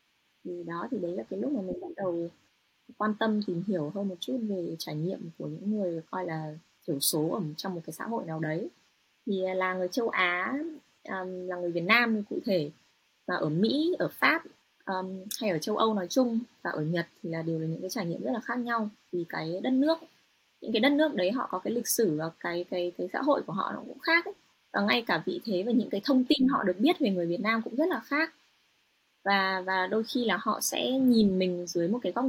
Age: 20-39